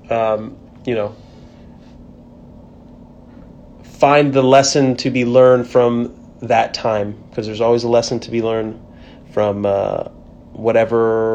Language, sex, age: English, male, 30-49